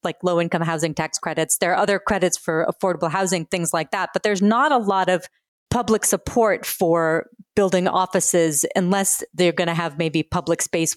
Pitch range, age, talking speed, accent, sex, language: 170-220 Hz, 30-49, 190 wpm, American, female, English